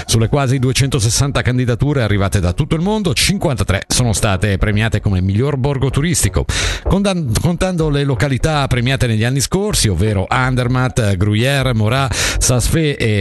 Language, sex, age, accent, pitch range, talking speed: Italian, male, 50-69, native, 100-140 Hz, 135 wpm